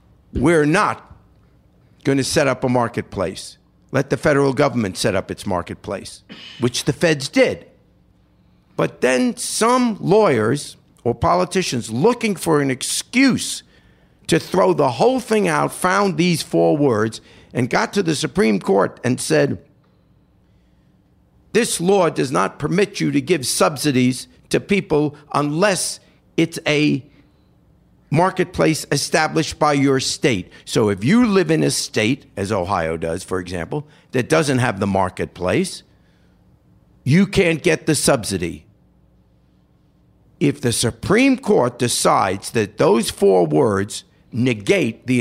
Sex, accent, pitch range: male, American, 120-180 Hz